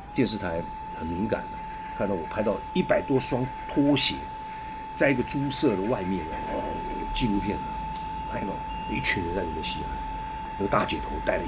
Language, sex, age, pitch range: Chinese, male, 50-69, 85-115 Hz